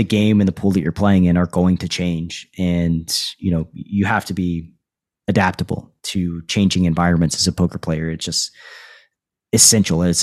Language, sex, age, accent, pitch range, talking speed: English, male, 30-49, American, 90-110 Hz, 190 wpm